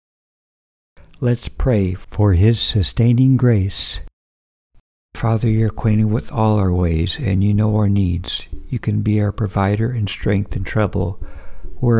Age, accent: 60-79, American